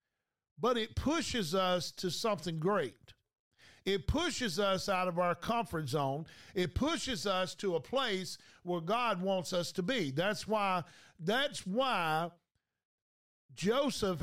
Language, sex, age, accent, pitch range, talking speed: English, male, 50-69, American, 180-225 Hz, 135 wpm